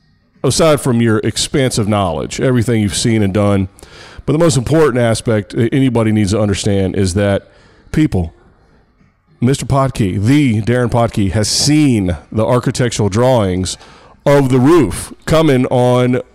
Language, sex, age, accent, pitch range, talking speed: English, male, 40-59, American, 110-150 Hz, 135 wpm